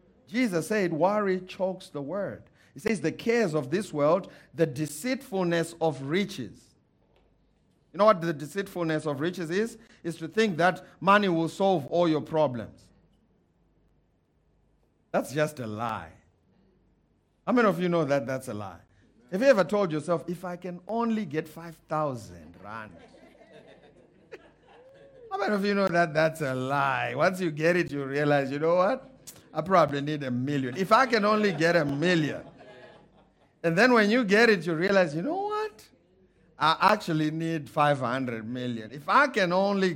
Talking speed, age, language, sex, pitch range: 165 wpm, 50-69, English, male, 150-195 Hz